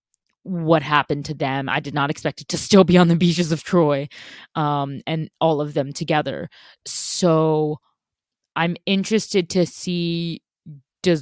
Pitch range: 135-165 Hz